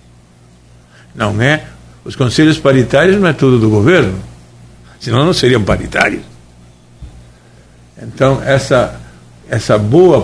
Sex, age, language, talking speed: male, 60-79, Portuguese, 105 wpm